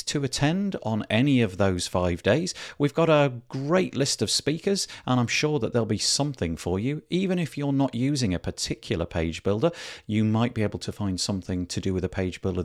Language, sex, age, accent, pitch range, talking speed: English, male, 40-59, British, 90-135 Hz, 220 wpm